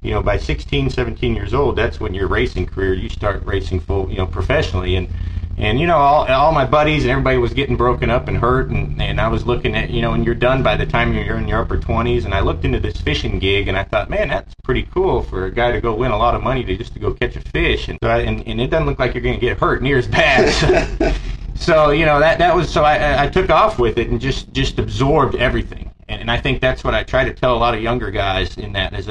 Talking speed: 280 wpm